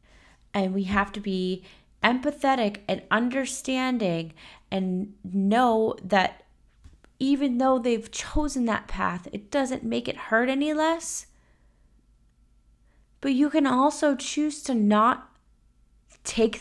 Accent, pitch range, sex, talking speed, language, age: American, 200-260 Hz, female, 115 wpm, English, 20-39